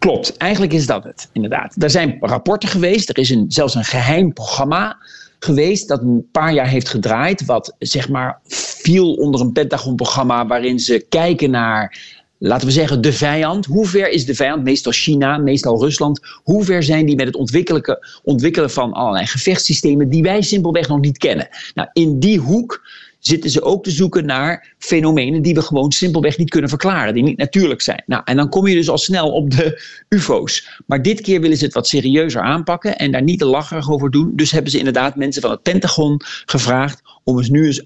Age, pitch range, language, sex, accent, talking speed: 50-69, 130-175 Hz, Dutch, male, Dutch, 200 wpm